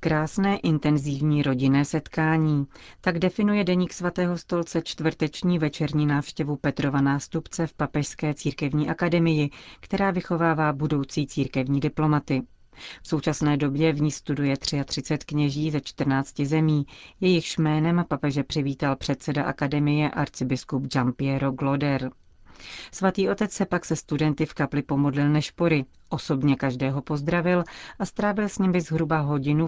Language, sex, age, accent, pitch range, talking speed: Czech, female, 40-59, native, 140-165 Hz, 125 wpm